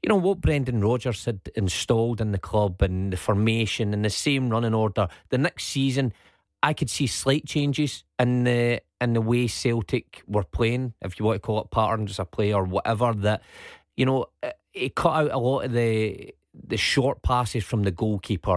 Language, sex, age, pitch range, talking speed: English, male, 30-49, 105-130 Hz, 200 wpm